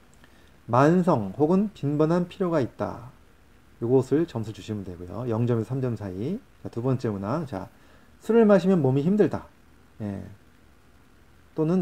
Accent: native